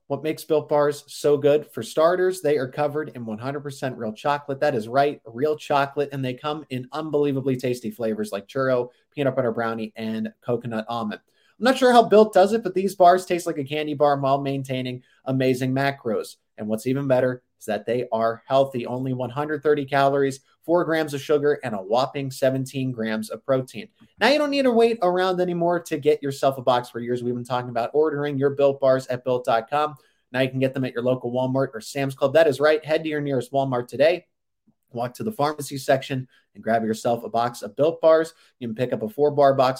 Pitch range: 125-145 Hz